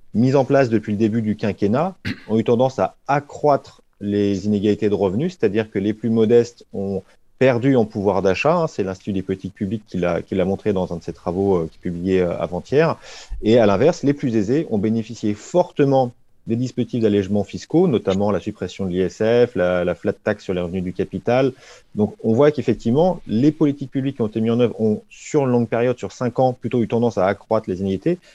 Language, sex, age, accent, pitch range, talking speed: French, male, 30-49, French, 95-120 Hz, 220 wpm